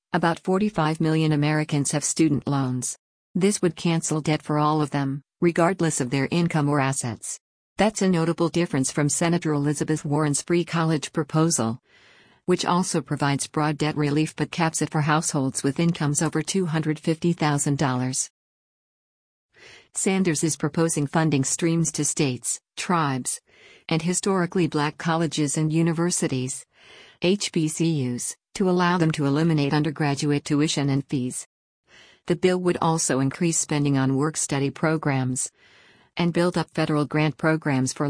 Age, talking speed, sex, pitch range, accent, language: 50-69, 140 wpm, female, 145-170 Hz, American, English